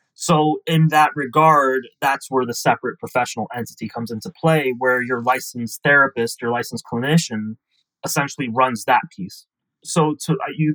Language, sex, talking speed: English, male, 145 wpm